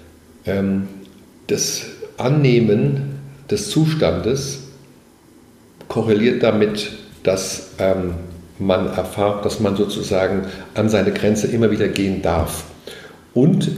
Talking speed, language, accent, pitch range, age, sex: 85 wpm, German, German, 100-130 Hz, 50-69, male